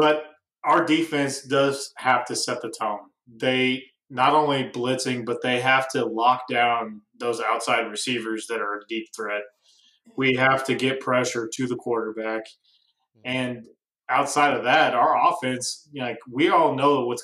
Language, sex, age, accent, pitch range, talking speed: English, male, 20-39, American, 120-135 Hz, 160 wpm